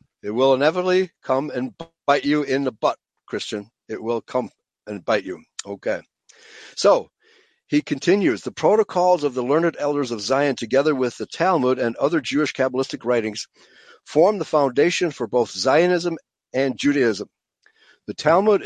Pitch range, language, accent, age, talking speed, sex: 125-165 Hz, English, American, 60-79, 155 wpm, male